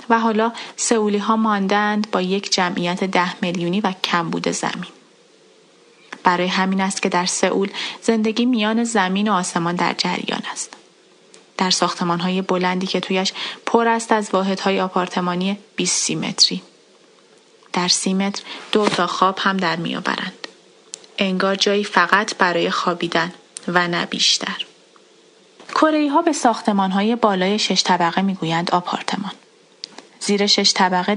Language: Persian